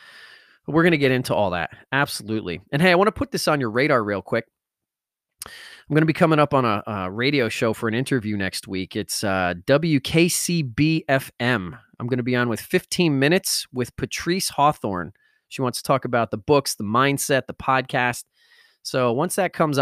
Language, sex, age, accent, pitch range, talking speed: English, male, 30-49, American, 115-160 Hz, 195 wpm